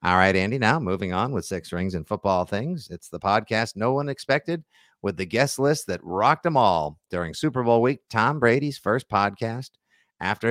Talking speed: 200 wpm